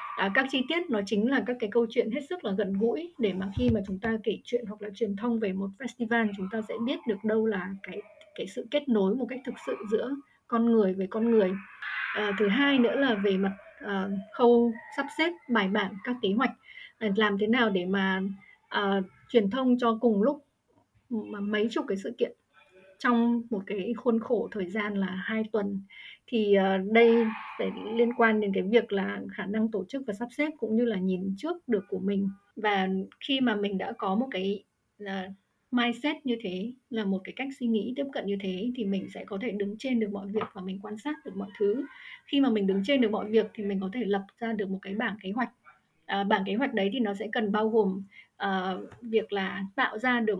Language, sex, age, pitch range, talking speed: Vietnamese, female, 20-39, 200-240 Hz, 230 wpm